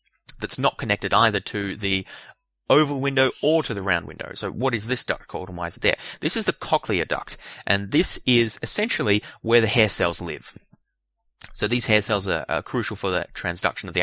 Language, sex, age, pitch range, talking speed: English, male, 20-39, 95-125 Hz, 215 wpm